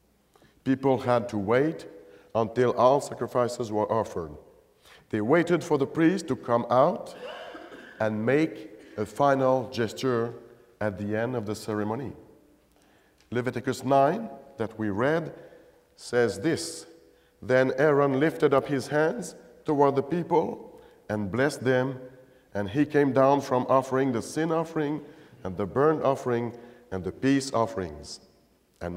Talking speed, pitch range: 135 wpm, 115-155 Hz